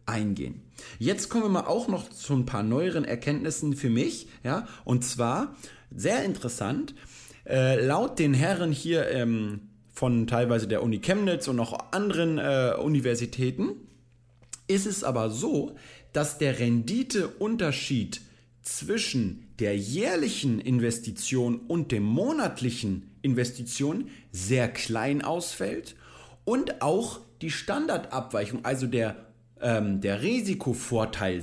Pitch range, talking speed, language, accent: 115-155 Hz, 115 wpm, German, German